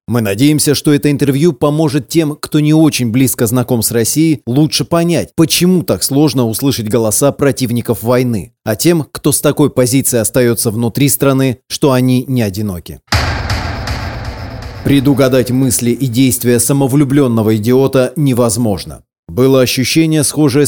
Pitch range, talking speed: 120-145 Hz, 135 wpm